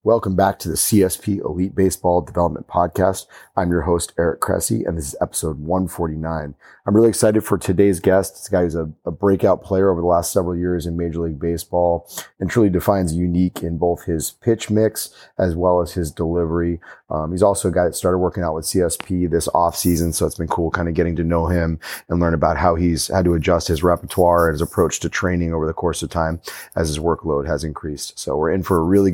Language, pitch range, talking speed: English, 85-100 Hz, 225 wpm